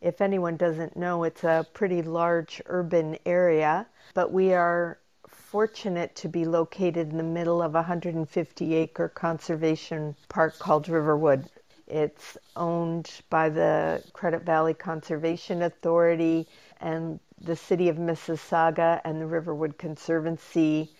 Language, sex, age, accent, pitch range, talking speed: English, female, 50-69, American, 160-175 Hz, 125 wpm